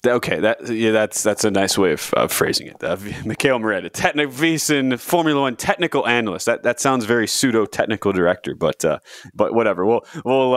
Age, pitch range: 20-39, 105-140 Hz